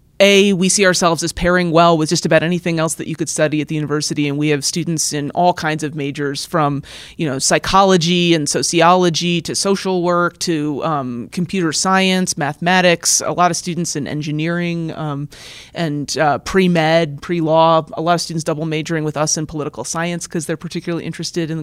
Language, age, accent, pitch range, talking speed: English, 30-49, American, 155-180 Hz, 190 wpm